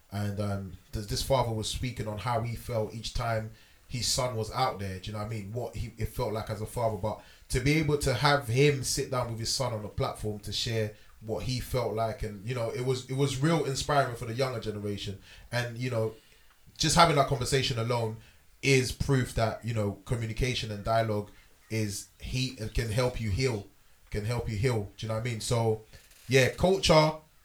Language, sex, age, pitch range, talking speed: English, male, 20-39, 105-135 Hz, 220 wpm